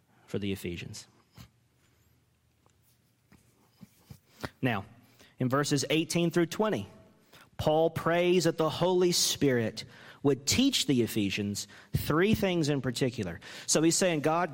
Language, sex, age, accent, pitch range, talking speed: English, male, 40-59, American, 115-185 Hz, 110 wpm